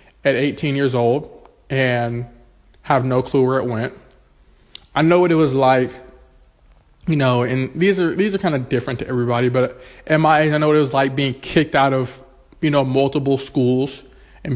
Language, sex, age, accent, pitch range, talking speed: English, male, 20-39, American, 125-140 Hz, 200 wpm